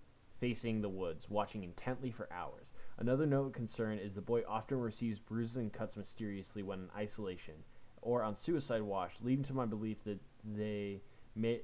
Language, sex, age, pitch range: English, male, 20-39, 100-120 Hz